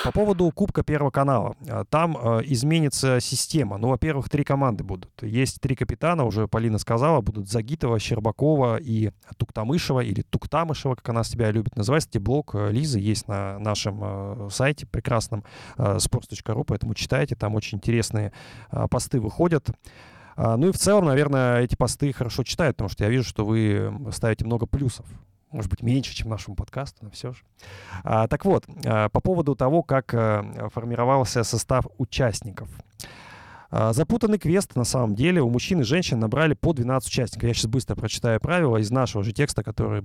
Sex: male